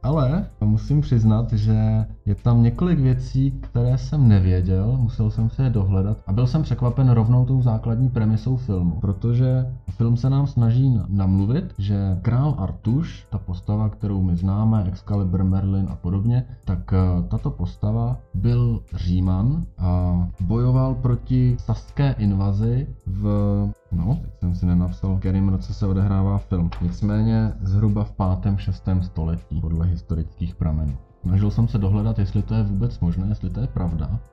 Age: 20-39